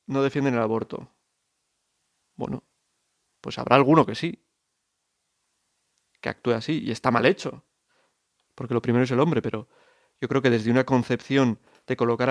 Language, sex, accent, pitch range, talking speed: Spanish, male, Spanish, 120-145 Hz, 155 wpm